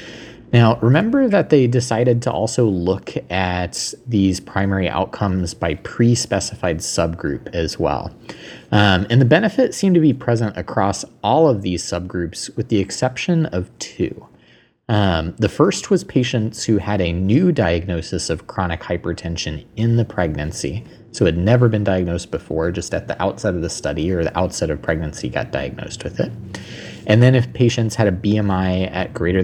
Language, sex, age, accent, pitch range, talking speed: English, male, 30-49, American, 90-120 Hz, 165 wpm